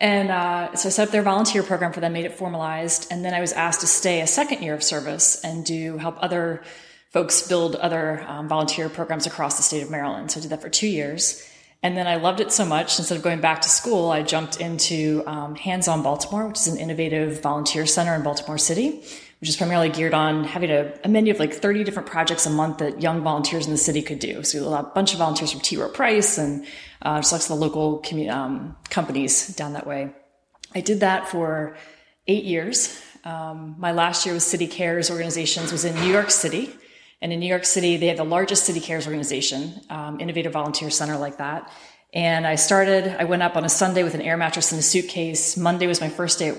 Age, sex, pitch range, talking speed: 30-49, female, 155-175 Hz, 235 wpm